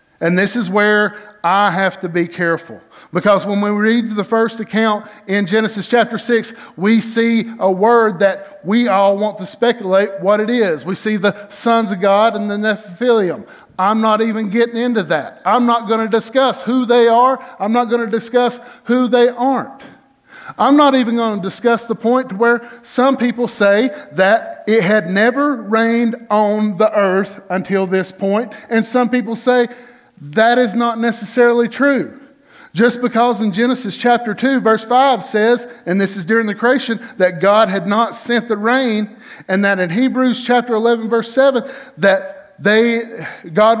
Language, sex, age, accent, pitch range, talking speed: English, male, 50-69, American, 205-245 Hz, 175 wpm